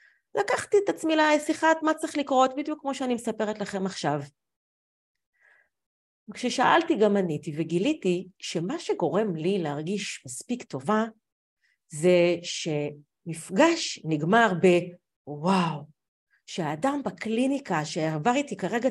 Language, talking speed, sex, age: Hebrew, 100 wpm, female, 40-59